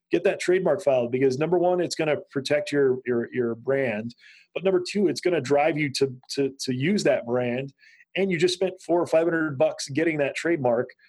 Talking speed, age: 210 wpm, 30-49